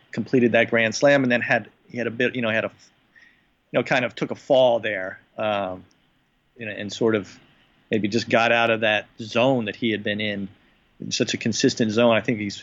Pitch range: 105-120 Hz